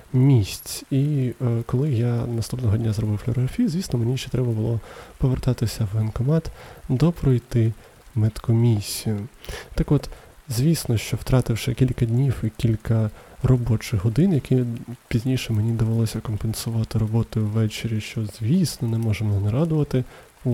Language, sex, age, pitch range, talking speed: Ukrainian, male, 20-39, 110-130 Hz, 130 wpm